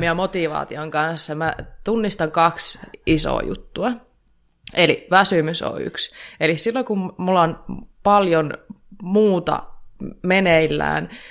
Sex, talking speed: female, 105 wpm